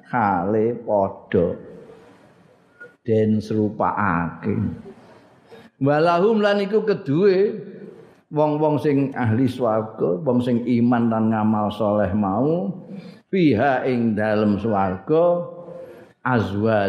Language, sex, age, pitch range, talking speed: Indonesian, male, 50-69, 105-155 Hz, 80 wpm